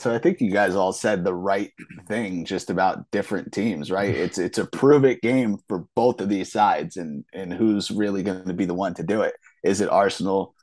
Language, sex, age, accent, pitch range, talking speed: English, male, 30-49, American, 95-115 Hz, 230 wpm